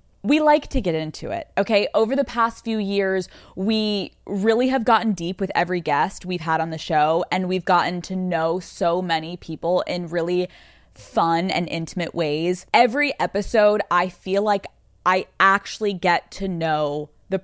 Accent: American